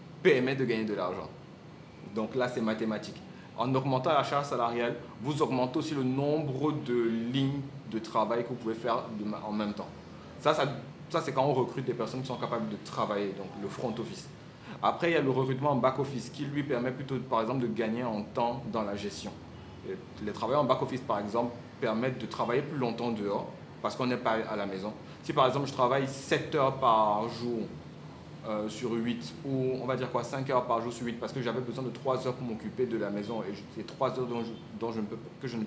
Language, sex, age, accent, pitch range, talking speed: French, male, 30-49, French, 110-135 Hz, 235 wpm